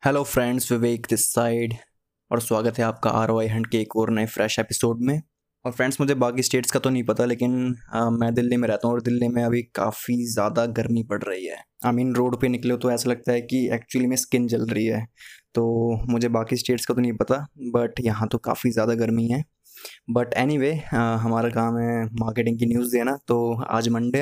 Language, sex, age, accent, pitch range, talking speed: Hindi, male, 20-39, native, 115-135 Hz, 220 wpm